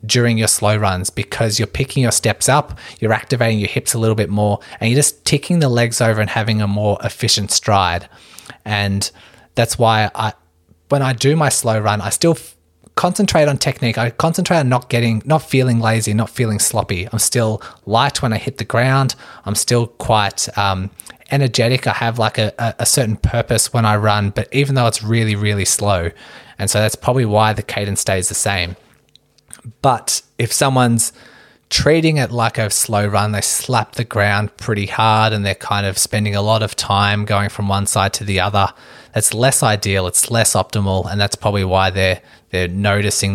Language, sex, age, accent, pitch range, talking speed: English, male, 20-39, Australian, 100-120 Hz, 200 wpm